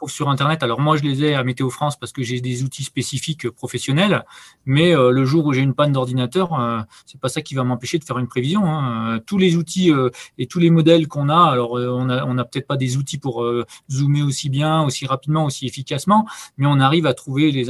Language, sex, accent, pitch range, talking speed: French, male, French, 125-155 Hz, 220 wpm